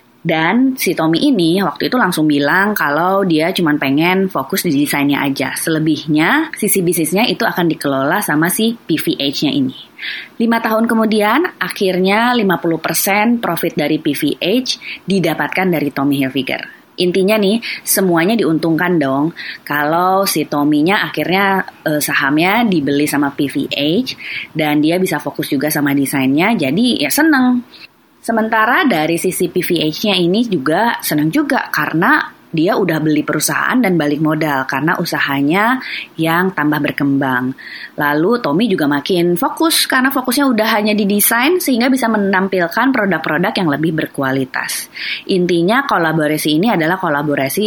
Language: Indonesian